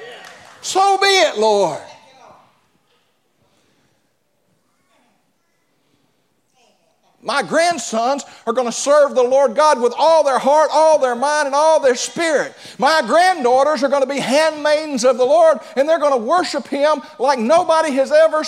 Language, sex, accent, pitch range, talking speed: English, male, American, 235-300 Hz, 135 wpm